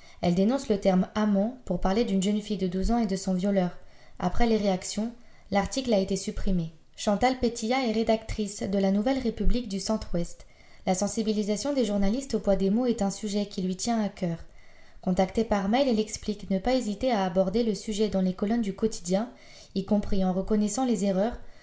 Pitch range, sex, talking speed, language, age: 195-230 Hz, female, 205 wpm, French, 20-39